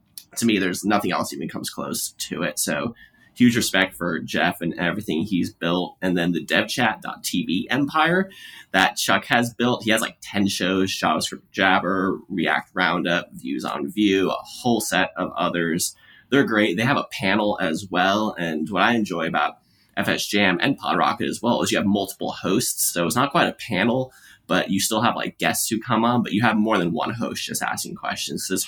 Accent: American